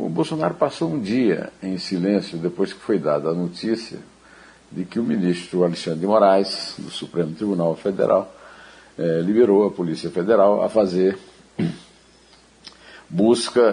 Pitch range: 95-135 Hz